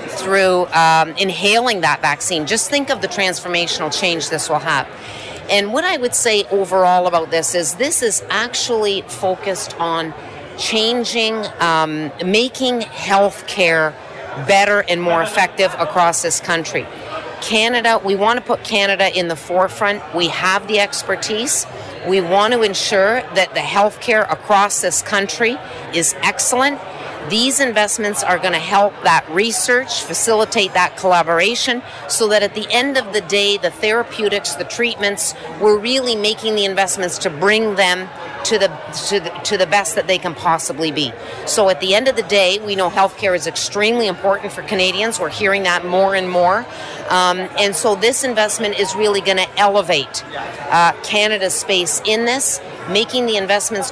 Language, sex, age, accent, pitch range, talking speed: English, female, 50-69, American, 180-215 Hz, 165 wpm